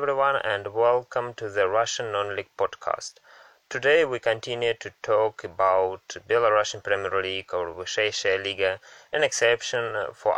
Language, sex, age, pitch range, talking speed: English, male, 20-39, 100-125 Hz, 140 wpm